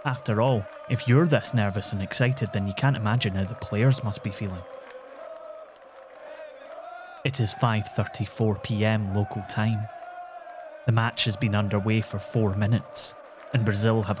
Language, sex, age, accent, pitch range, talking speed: English, male, 30-49, British, 105-125 Hz, 145 wpm